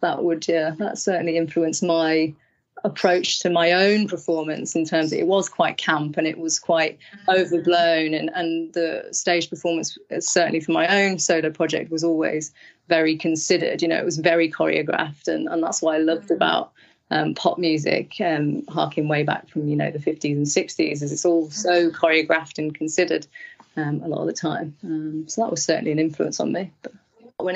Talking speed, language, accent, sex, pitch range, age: 200 wpm, English, British, female, 160-180 Hz, 30-49